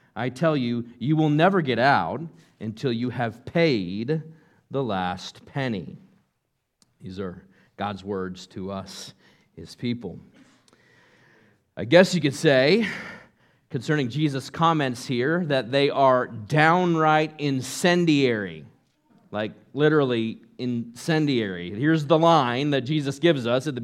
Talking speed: 125 wpm